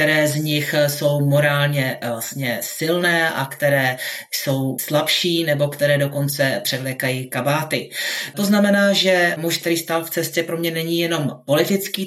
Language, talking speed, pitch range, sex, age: Czech, 145 wpm, 145-170 Hz, male, 30-49